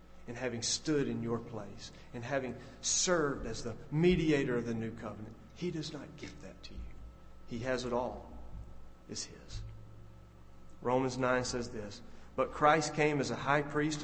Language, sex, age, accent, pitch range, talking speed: English, male, 40-59, American, 115-180 Hz, 170 wpm